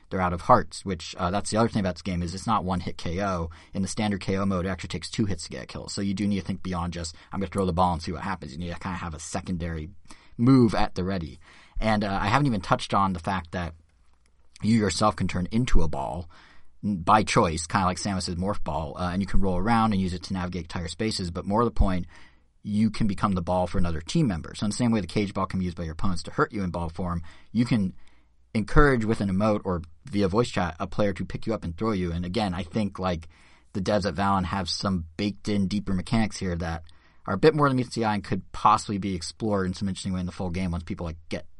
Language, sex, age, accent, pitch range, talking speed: English, male, 30-49, American, 85-105 Hz, 280 wpm